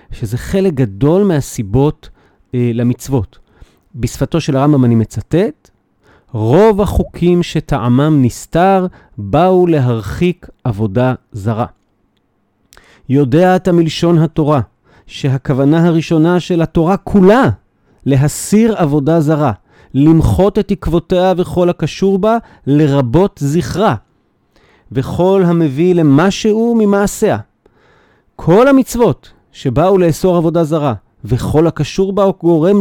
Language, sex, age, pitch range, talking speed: Hebrew, male, 40-59, 130-180 Hz, 100 wpm